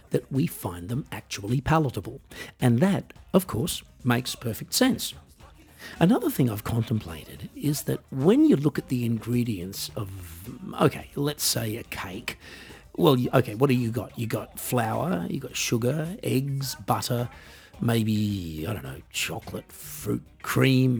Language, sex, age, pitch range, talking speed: English, male, 50-69, 100-145 Hz, 150 wpm